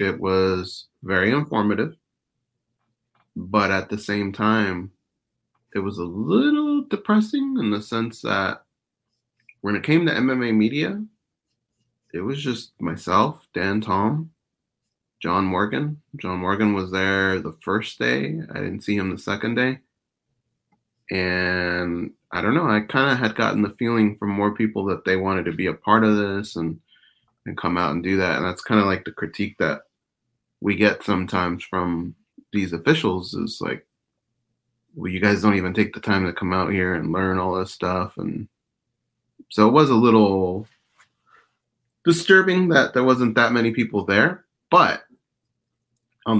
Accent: American